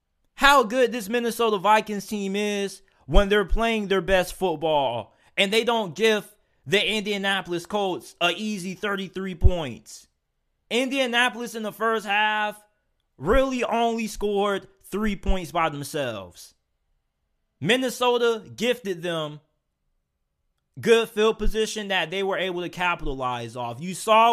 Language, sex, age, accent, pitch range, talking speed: English, male, 20-39, American, 175-215 Hz, 125 wpm